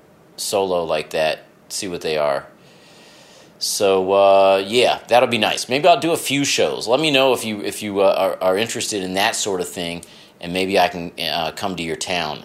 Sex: male